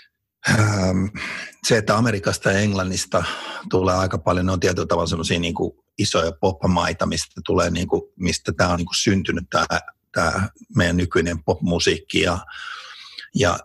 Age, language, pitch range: 50-69, Finnish, 90-105 Hz